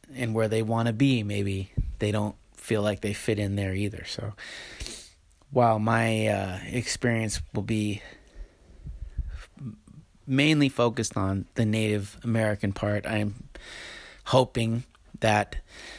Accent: American